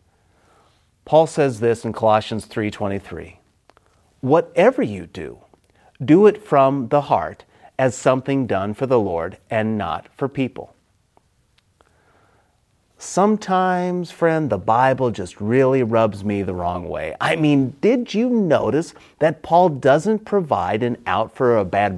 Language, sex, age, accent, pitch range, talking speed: English, male, 40-59, American, 110-180 Hz, 135 wpm